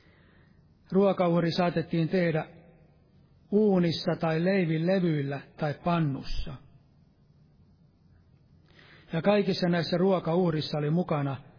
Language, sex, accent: Finnish, male, native